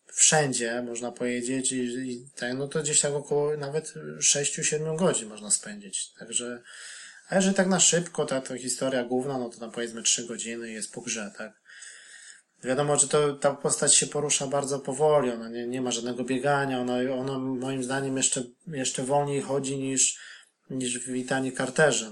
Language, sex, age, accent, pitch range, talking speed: Polish, male, 20-39, native, 125-150 Hz, 175 wpm